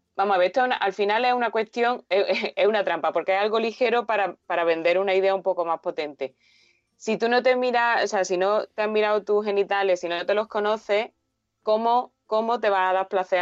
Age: 20-39